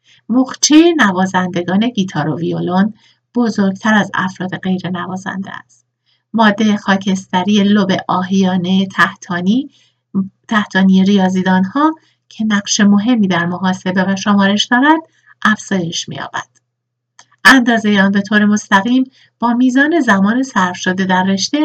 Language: Persian